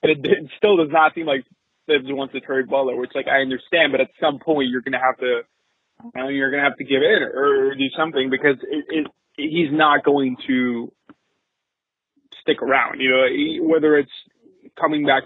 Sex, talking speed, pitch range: male, 205 wpm, 130-165 Hz